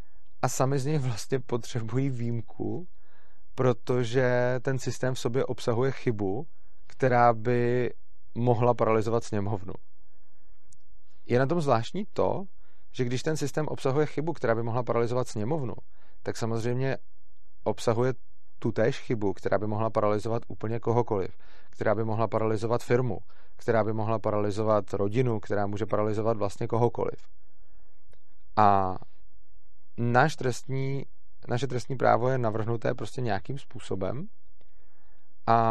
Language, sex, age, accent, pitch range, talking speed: Czech, male, 30-49, native, 110-125 Hz, 120 wpm